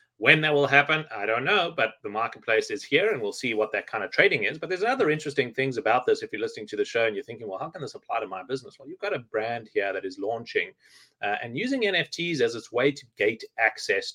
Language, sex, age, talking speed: English, male, 30-49, 270 wpm